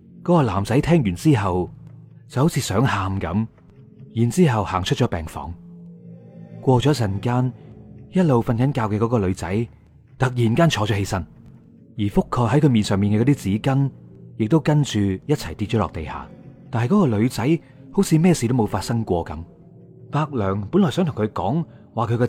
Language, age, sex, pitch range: Chinese, 30-49, male, 100-140 Hz